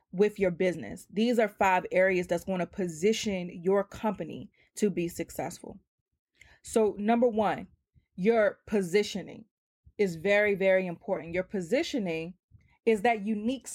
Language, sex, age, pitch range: English, female, 20-39, 185-225 Hz